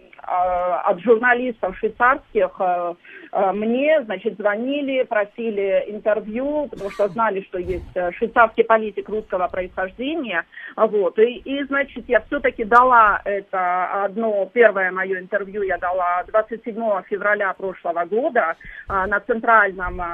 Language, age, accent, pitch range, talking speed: Russian, 40-59, native, 190-240 Hz, 110 wpm